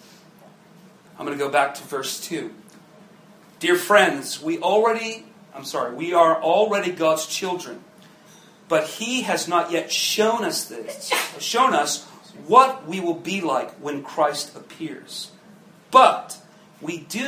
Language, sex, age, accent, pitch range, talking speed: English, male, 40-59, American, 180-220 Hz, 140 wpm